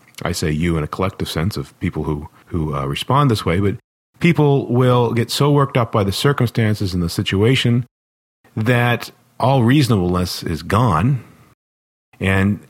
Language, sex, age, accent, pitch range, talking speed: English, male, 40-59, American, 85-120 Hz, 160 wpm